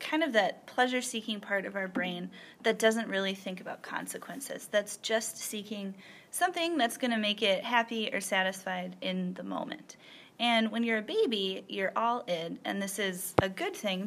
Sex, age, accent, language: female, 20-39, American, English